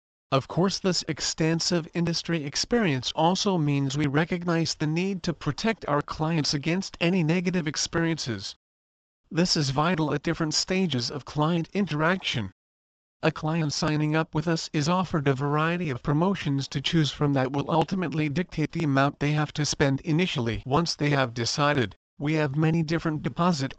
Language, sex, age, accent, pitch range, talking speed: English, male, 40-59, American, 140-165 Hz, 160 wpm